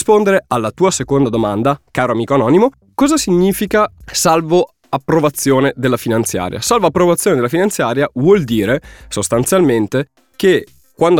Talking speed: 120 wpm